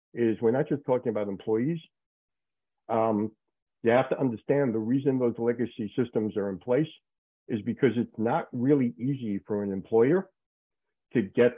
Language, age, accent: English, 50-69, American